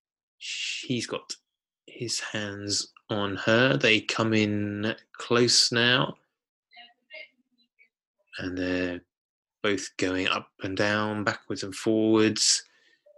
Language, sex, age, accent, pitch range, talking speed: English, male, 20-39, British, 100-145 Hz, 95 wpm